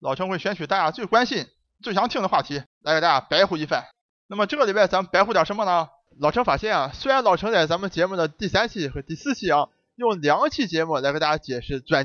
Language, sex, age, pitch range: Chinese, male, 20-39, 155-230 Hz